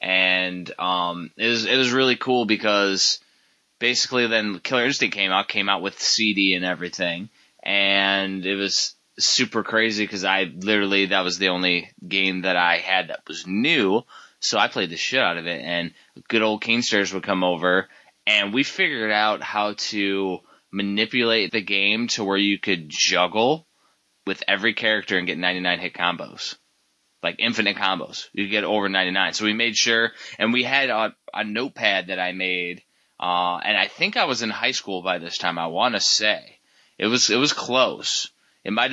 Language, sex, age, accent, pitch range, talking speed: English, male, 20-39, American, 95-110 Hz, 185 wpm